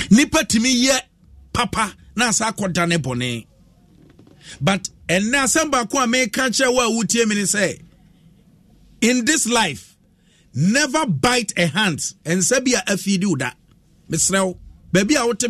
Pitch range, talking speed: 180-255 Hz, 130 wpm